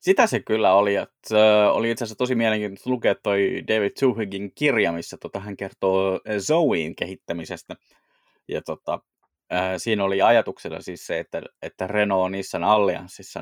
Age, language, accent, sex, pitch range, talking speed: 20-39, Finnish, native, male, 90-105 Hz, 155 wpm